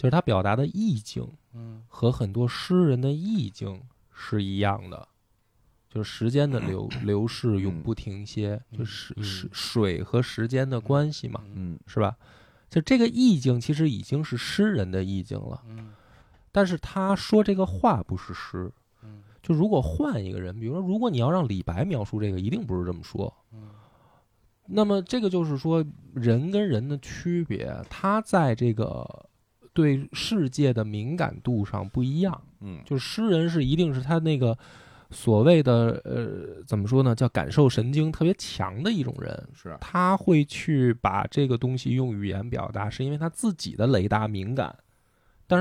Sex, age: male, 20-39